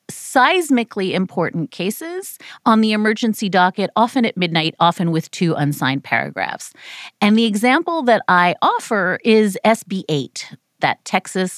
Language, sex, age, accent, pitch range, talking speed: English, female, 40-59, American, 175-245 Hz, 130 wpm